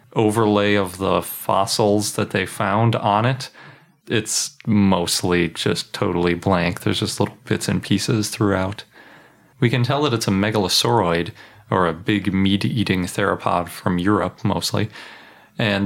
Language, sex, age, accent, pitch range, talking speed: English, male, 30-49, American, 100-115 Hz, 140 wpm